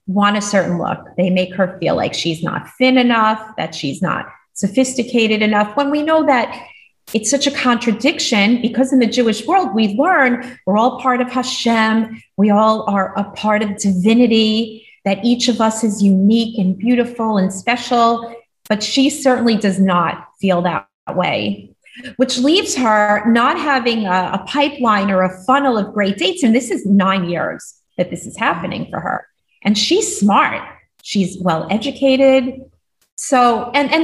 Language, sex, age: English, female, 30-49